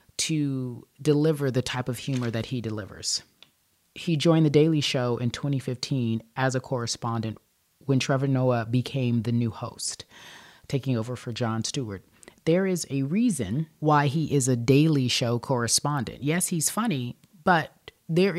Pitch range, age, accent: 125-160 Hz, 30-49, American